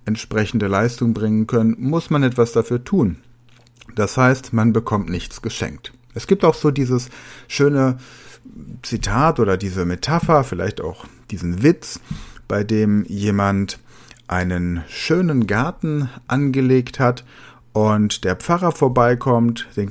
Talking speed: 125 wpm